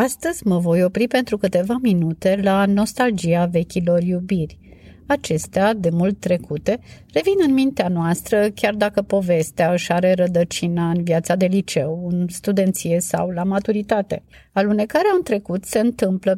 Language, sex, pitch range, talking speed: Romanian, female, 180-225 Hz, 145 wpm